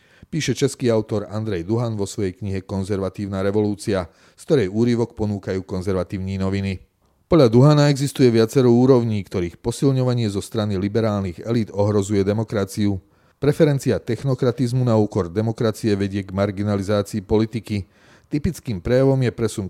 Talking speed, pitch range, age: 130 wpm, 100-120 Hz, 30-49